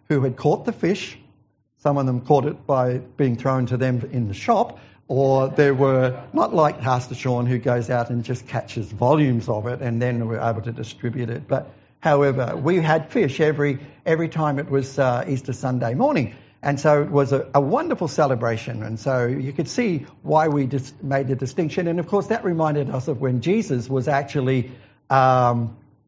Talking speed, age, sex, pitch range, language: 200 wpm, 60-79, male, 120-145 Hz, English